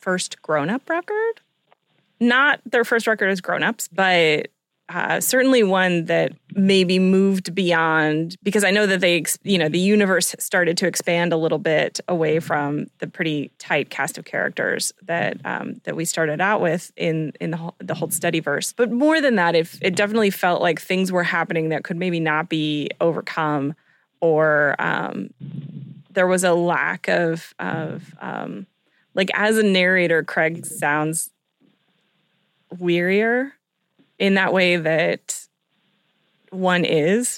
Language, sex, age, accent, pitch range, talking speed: English, female, 20-39, American, 160-190 Hz, 155 wpm